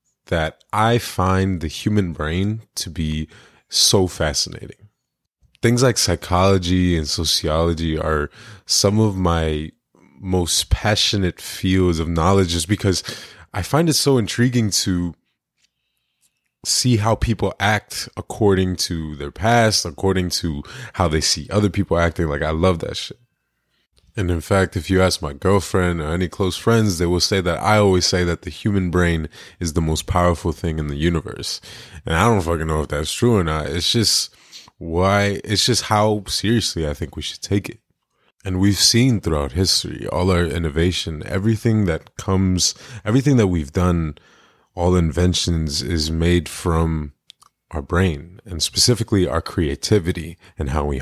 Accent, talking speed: American, 160 wpm